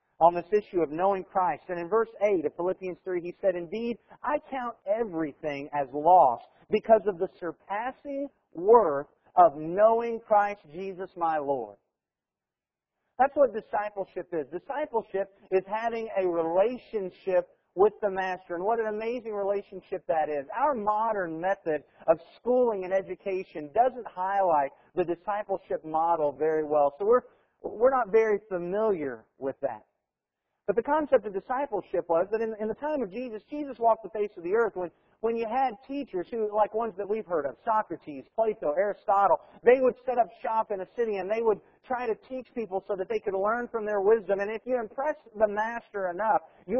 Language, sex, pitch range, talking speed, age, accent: English, male, 185-230 Hz, 175 wpm, 50-69, American